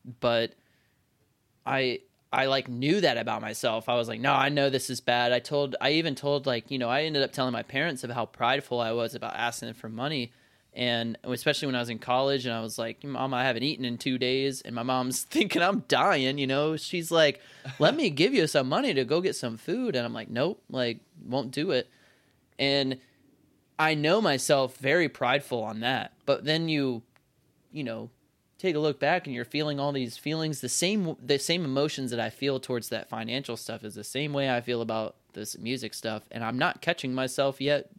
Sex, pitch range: male, 120-145 Hz